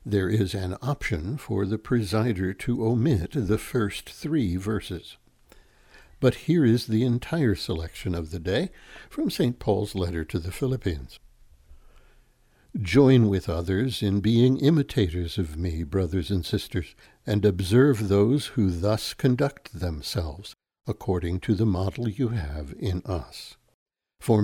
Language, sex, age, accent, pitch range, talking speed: English, male, 60-79, American, 95-120 Hz, 135 wpm